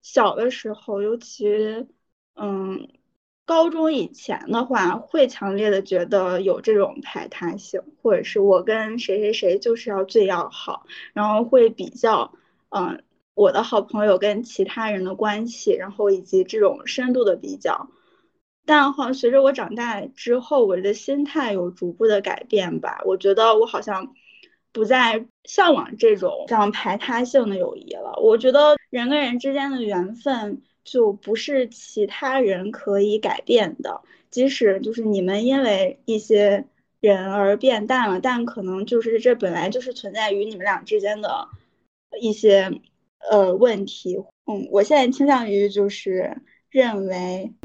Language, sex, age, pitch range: Chinese, female, 10-29, 200-265 Hz